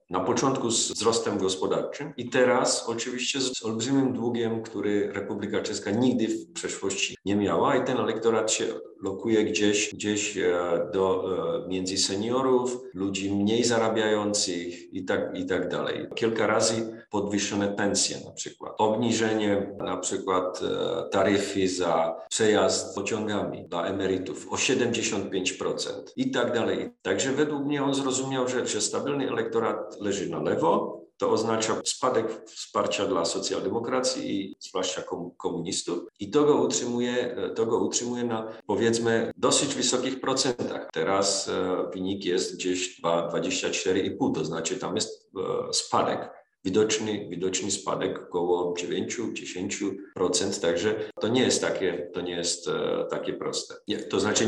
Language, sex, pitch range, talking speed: Polish, male, 95-130 Hz, 125 wpm